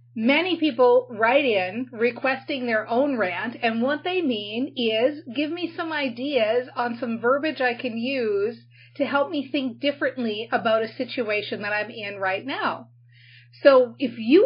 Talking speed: 160 wpm